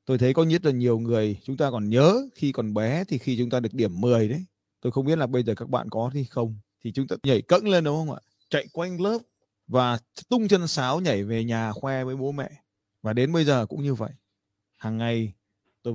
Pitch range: 110-150 Hz